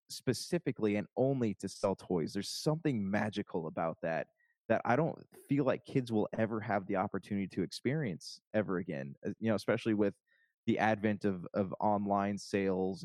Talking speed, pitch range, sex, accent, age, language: 165 wpm, 90-110 Hz, male, American, 20-39, English